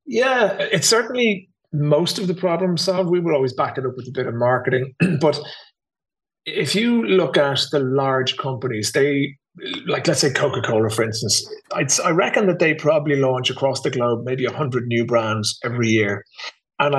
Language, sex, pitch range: English, male, 115-150 Hz